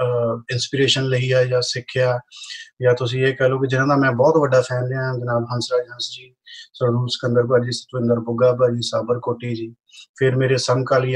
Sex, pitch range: male, 125-155 Hz